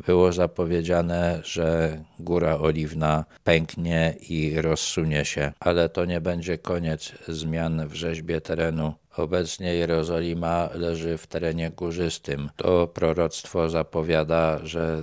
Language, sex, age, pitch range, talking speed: Polish, male, 50-69, 80-85 Hz, 110 wpm